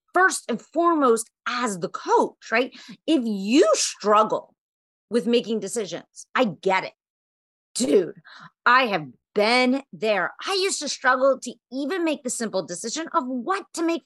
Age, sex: 40-59, female